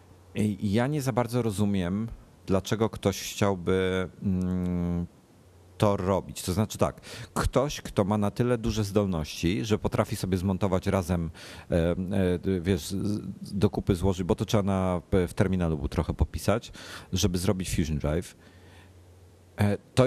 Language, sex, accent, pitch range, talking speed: Polish, male, native, 90-105 Hz, 130 wpm